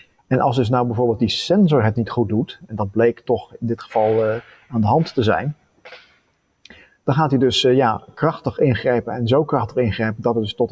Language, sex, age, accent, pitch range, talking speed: Dutch, male, 30-49, Dutch, 110-130 Hz, 225 wpm